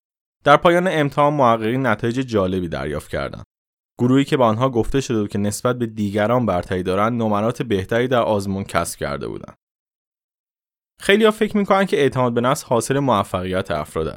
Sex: male